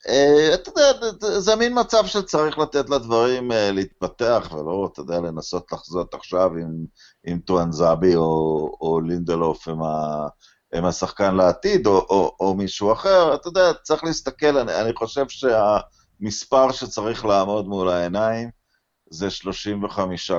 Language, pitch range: Hebrew, 90-130 Hz